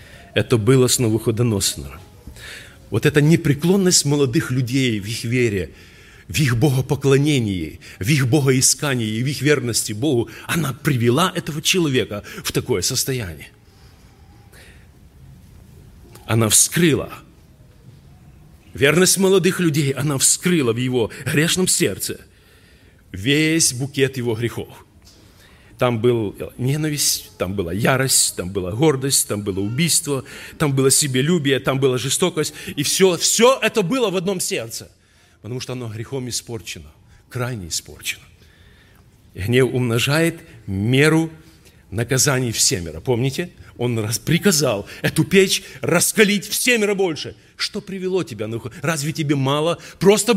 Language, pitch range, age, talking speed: Russian, 110-160 Hz, 40-59, 120 wpm